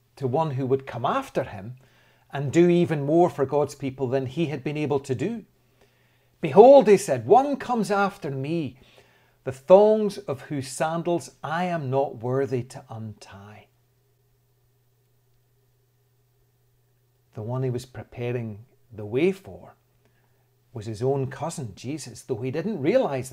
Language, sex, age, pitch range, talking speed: English, male, 40-59, 125-145 Hz, 145 wpm